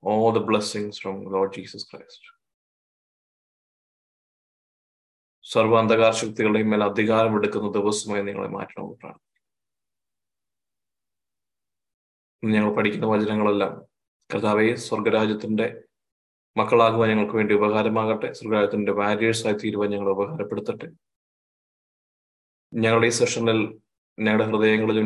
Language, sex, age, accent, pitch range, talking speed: Malayalam, male, 20-39, native, 105-115 Hz, 95 wpm